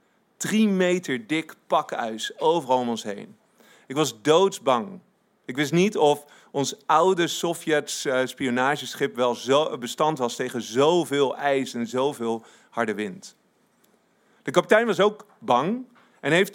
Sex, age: male, 40-59